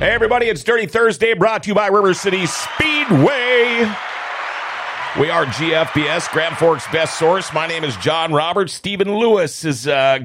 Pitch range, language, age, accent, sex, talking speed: 115-165 Hz, English, 40-59, American, male, 165 wpm